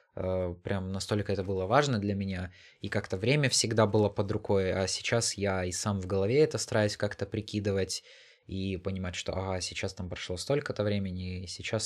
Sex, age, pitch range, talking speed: male, 20-39, 95-115 Hz, 180 wpm